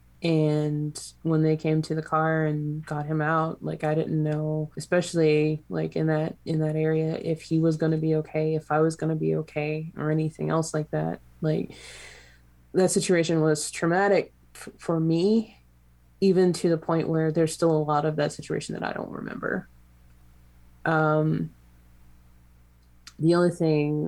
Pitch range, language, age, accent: 145-160 Hz, English, 20-39, American